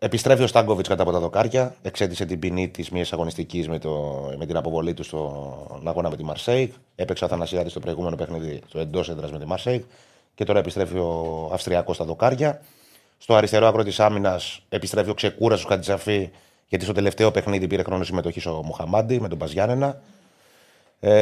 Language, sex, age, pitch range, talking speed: Greek, male, 30-49, 85-115 Hz, 180 wpm